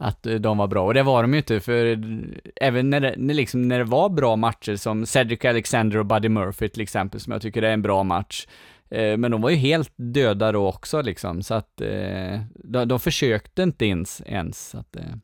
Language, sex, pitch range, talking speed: Swedish, male, 110-155 Hz, 185 wpm